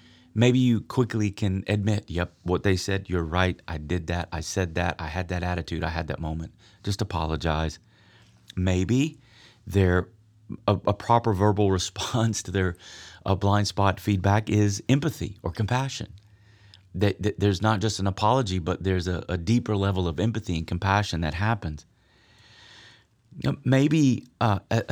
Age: 30-49